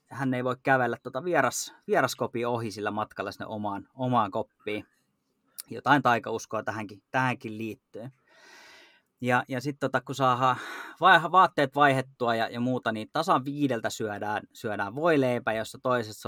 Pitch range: 110-130 Hz